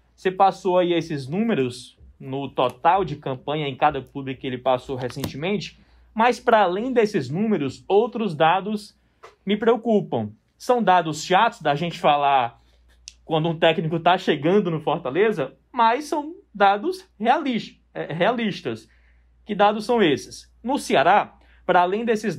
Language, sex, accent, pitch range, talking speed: Portuguese, male, Brazilian, 150-220 Hz, 135 wpm